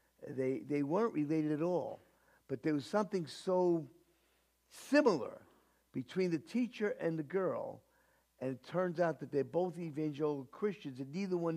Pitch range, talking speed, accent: 135-190 Hz, 155 wpm, American